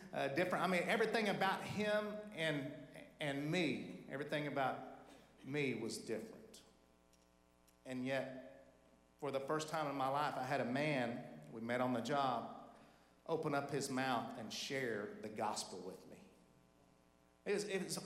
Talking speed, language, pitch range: 145 wpm, English, 145-210 Hz